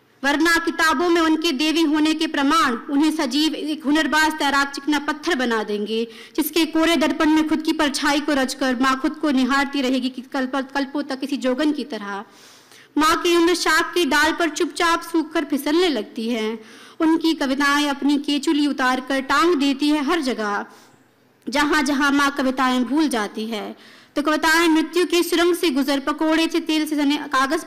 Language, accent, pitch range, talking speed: Hindi, native, 265-320 Hz, 165 wpm